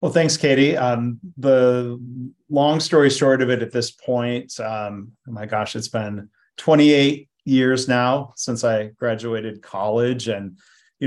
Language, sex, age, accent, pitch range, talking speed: English, male, 40-59, American, 110-135 Hz, 150 wpm